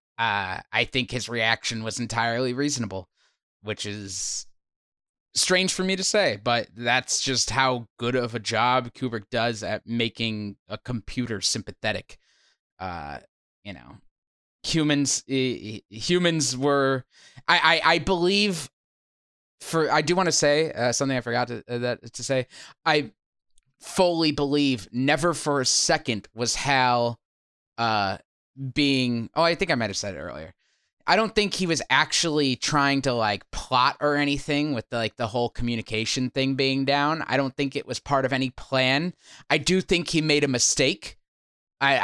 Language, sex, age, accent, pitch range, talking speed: English, male, 20-39, American, 115-145 Hz, 165 wpm